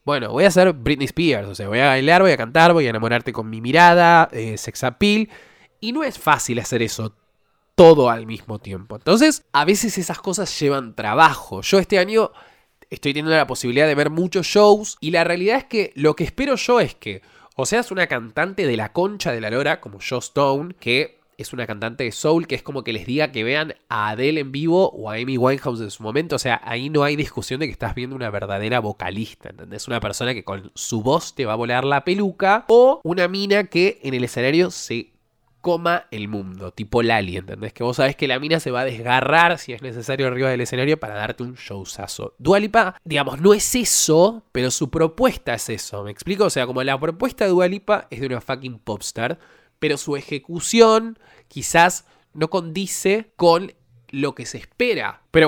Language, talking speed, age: Spanish, 215 wpm, 20-39